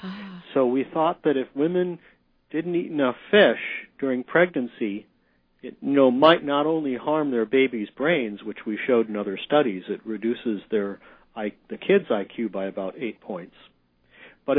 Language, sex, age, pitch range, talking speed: English, male, 50-69, 110-140 Hz, 165 wpm